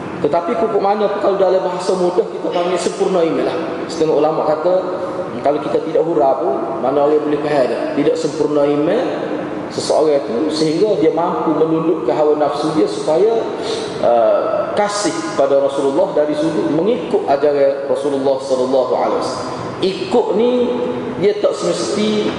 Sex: male